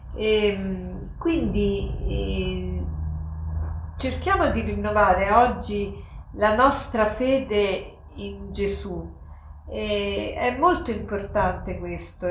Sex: female